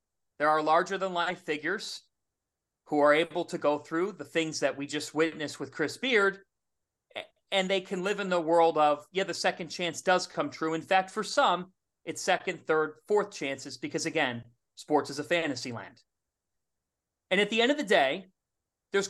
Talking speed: 190 wpm